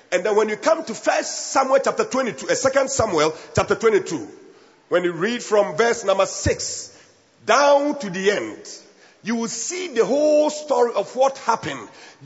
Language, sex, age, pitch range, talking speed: English, male, 50-69, 200-300 Hz, 165 wpm